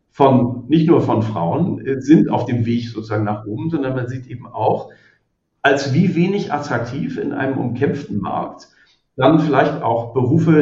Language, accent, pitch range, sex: German, German, 115-155 Hz, male